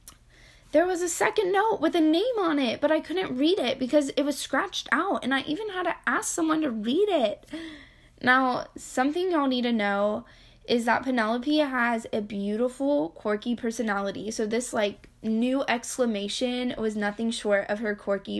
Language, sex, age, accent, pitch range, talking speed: English, female, 10-29, American, 215-275 Hz, 180 wpm